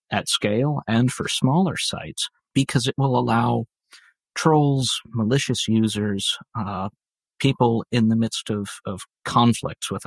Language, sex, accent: English, male, American